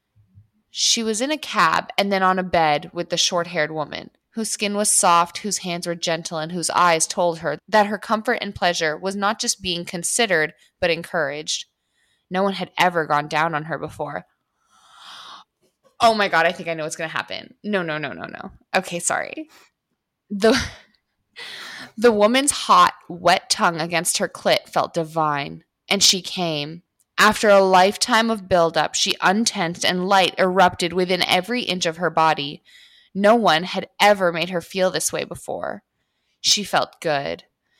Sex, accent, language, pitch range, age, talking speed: female, American, English, 165-210 Hz, 20-39, 175 wpm